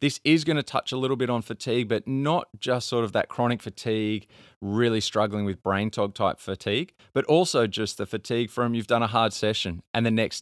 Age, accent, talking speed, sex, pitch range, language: 20-39, Australian, 225 wpm, male, 95-115 Hz, English